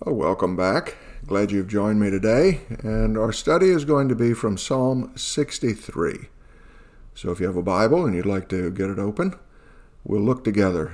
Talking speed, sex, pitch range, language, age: 190 wpm, male, 95-125 Hz, English, 50-69